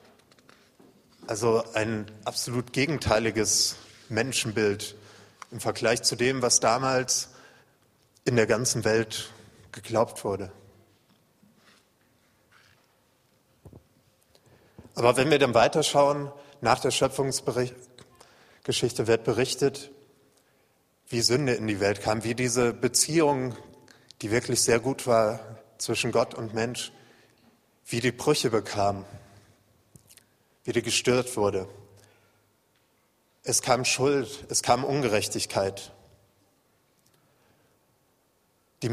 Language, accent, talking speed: German, German, 90 wpm